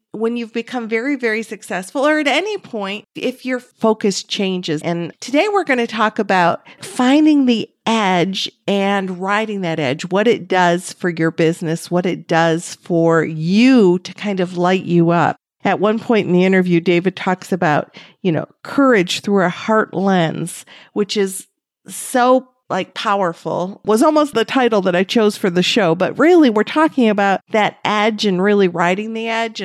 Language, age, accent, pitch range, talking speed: English, 50-69, American, 180-230 Hz, 180 wpm